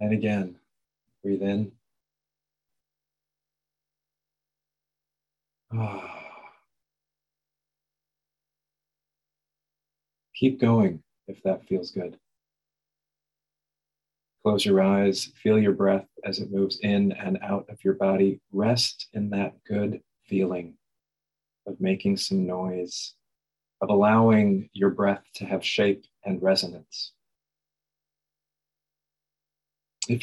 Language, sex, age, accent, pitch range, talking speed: English, male, 40-59, American, 105-155 Hz, 85 wpm